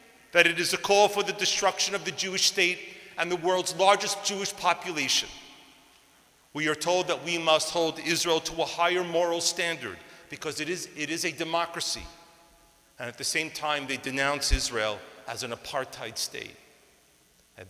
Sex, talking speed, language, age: male, 170 wpm, English, 40-59